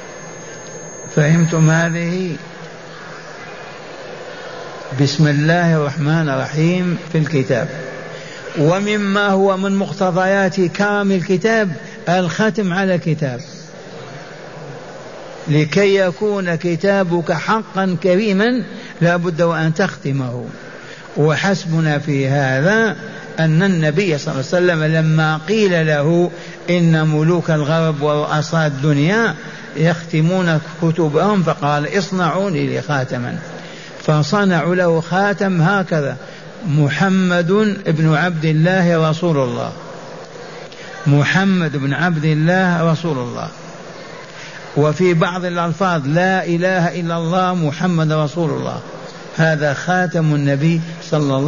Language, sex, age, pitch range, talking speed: Arabic, male, 60-79, 155-185 Hz, 95 wpm